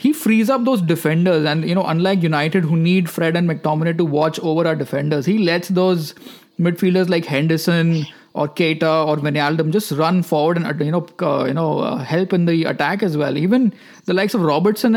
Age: 20-39